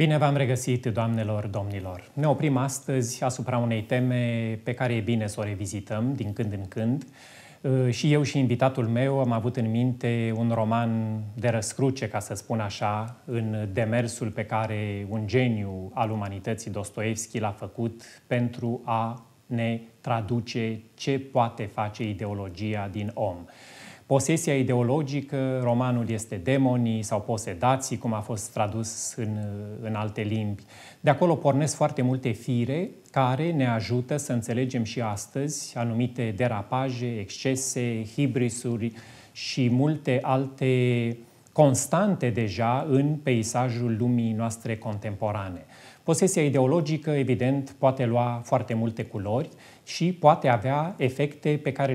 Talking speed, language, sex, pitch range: 135 wpm, Romanian, male, 110-130 Hz